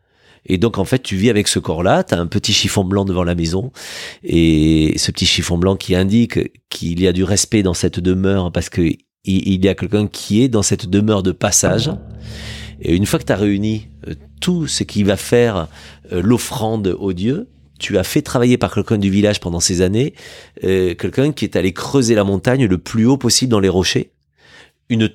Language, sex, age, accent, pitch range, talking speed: French, male, 40-59, French, 95-120 Hz, 205 wpm